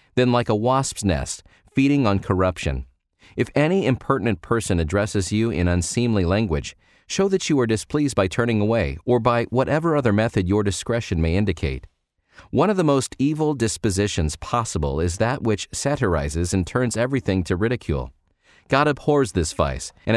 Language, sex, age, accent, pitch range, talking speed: English, male, 40-59, American, 90-120 Hz, 165 wpm